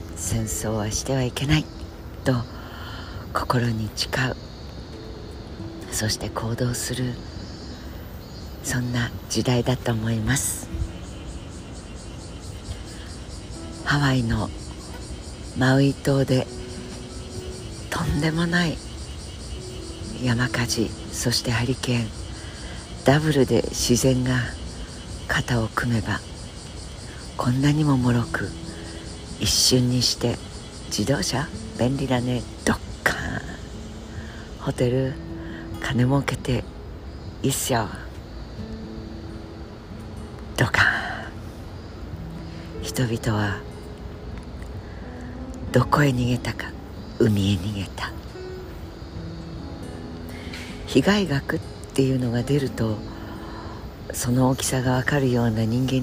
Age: 50-69